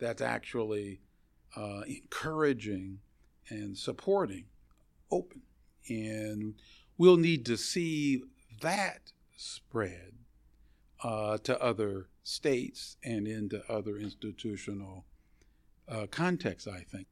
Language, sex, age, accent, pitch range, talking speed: English, male, 50-69, American, 100-125 Hz, 90 wpm